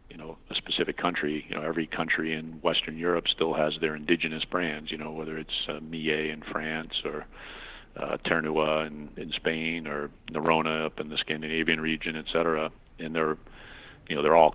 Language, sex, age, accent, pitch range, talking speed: English, male, 40-59, American, 75-80 Hz, 190 wpm